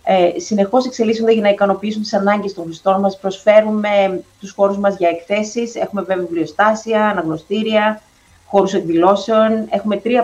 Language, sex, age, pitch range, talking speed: Greek, female, 30-49, 175-225 Hz, 140 wpm